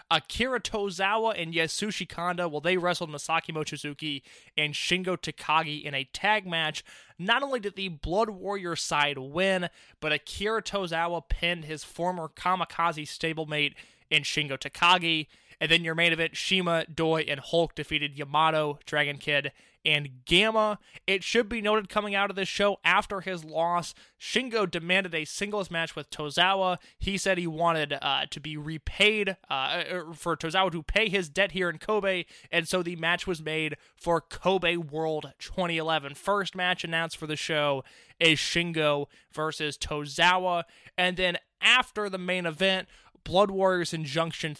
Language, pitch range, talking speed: English, 155-190 Hz, 155 wpm